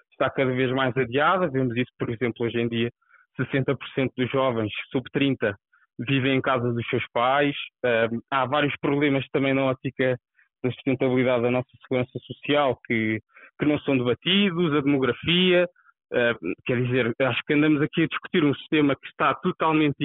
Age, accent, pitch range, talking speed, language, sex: 20-39, Brazilian, 130-175 Hz, 170 wpm, Portuguese, male